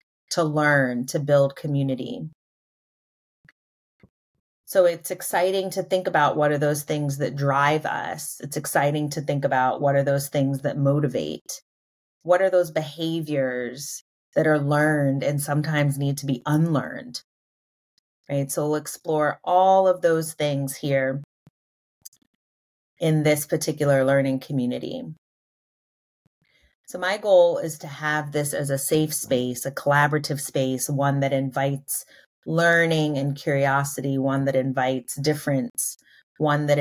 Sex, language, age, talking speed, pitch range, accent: female, English, 30-49, 135 wpm, 135-155 Hz, American